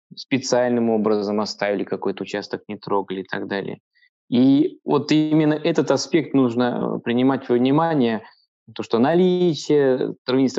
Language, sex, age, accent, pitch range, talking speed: Russian, male, 20-39, native, 115-140 Hz, 130 wpm